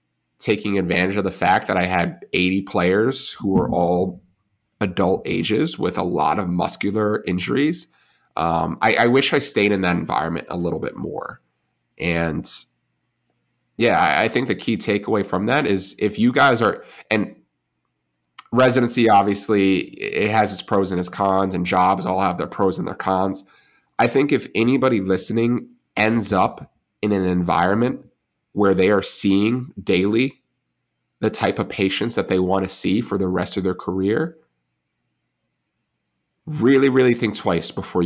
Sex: male